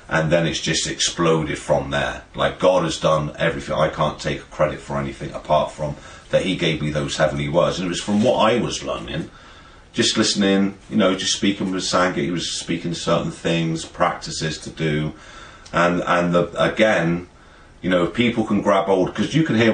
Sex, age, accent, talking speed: male, 40-59, British, 195 wpm